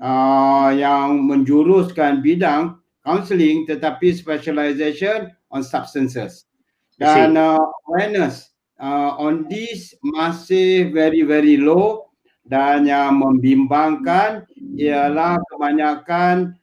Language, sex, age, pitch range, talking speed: Malay, male, 60-79, 145-185 Hz, 85 wpm